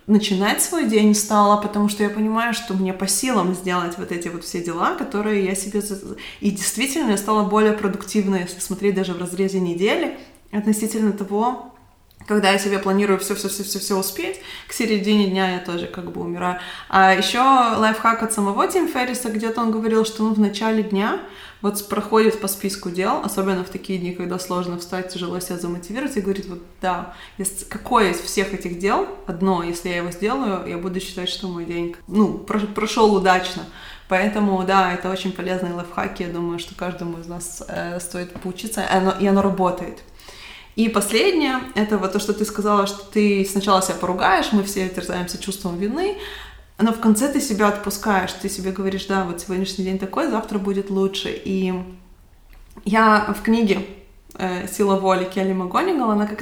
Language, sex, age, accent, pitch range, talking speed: Russian, female, 20-39, native, 185-215 Hz, 175 wpm